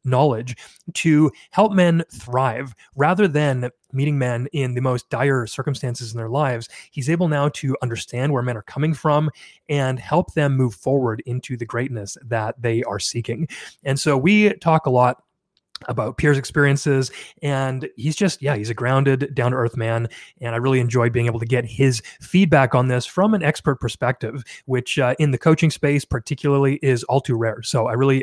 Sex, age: male, 30-49